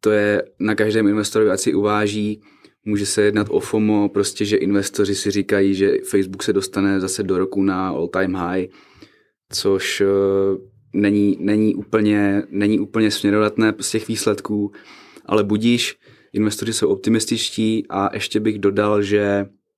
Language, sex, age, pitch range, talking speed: Czech, male, 20-39, 100-110 Hz, 145 wpm